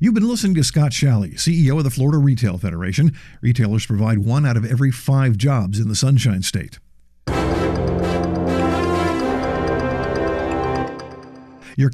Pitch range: 105-150 Hz